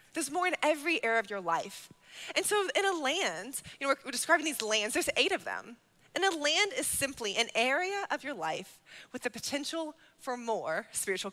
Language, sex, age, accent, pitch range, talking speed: English, female, 20-39, American, 220-335 Hz, 205 wpm